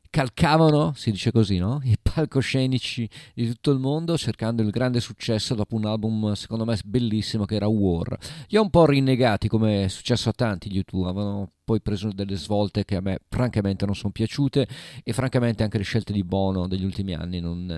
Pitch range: 100-125 Hz